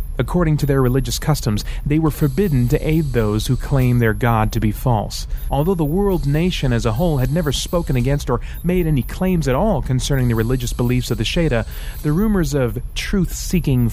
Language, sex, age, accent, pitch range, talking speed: English, male, 30-49, American, 110-140 Hz, 200 wpm